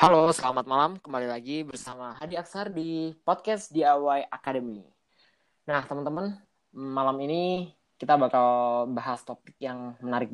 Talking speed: 130 wpm